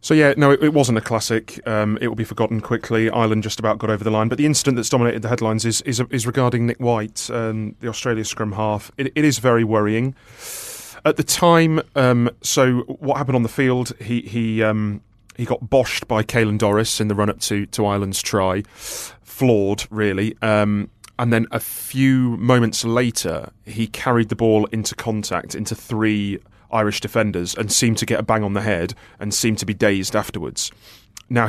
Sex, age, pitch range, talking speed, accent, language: male, 30-49, 105-120 Hz, 200 wpm, British, English